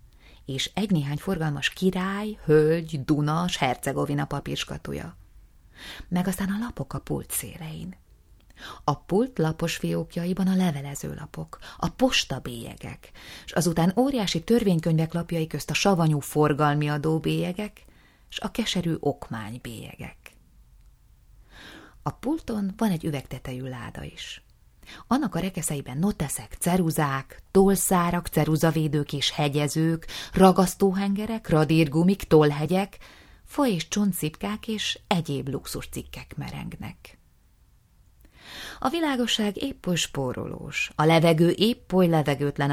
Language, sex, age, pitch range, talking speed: Hungarian, female, 30-49, 140-190 Hz, 110 wpm